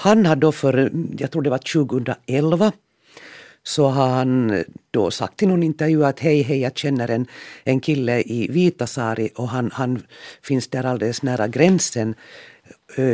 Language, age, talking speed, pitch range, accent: Swedish, 50-69, 165 wpm, 125-155 Hz, Finnish